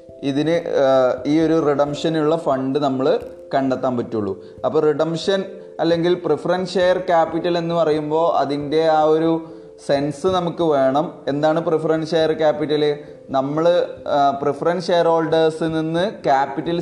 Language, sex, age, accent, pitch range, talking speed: Malayalam, male, 20-39, native, 145-170 Hz, 115 wpm